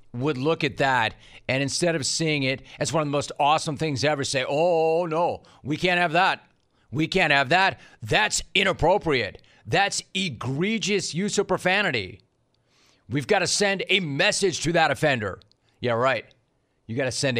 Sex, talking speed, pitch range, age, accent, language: male, 175 wpm, 125-160 Hz, 40-59, American, English